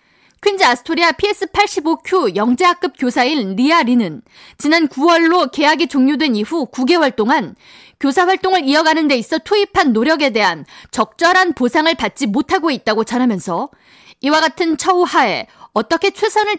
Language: Korean